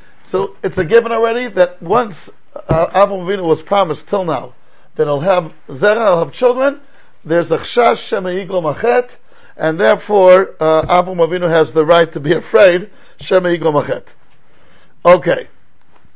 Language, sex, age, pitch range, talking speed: English, male, 50-69, 165-225 Hz, 135 wpm